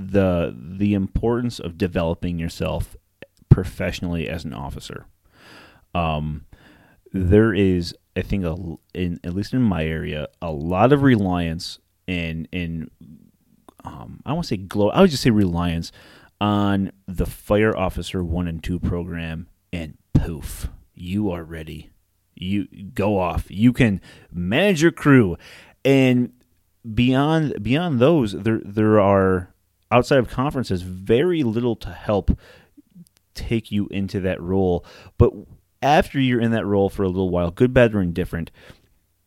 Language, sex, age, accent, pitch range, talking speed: English, male, 30-49, American, 85-110 Hz, 140 wpm